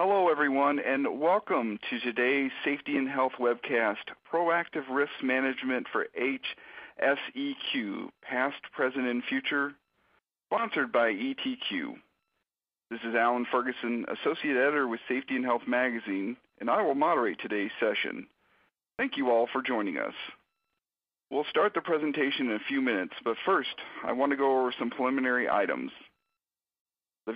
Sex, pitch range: male, 120-170 Hz